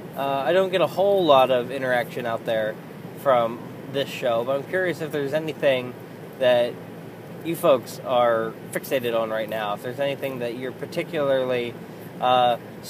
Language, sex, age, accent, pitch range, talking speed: English, male, 20-39, American, 120-155 Hz, 165 wpm